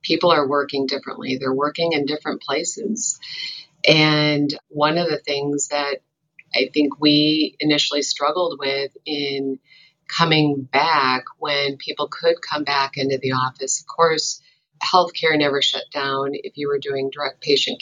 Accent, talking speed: American, 150 wpm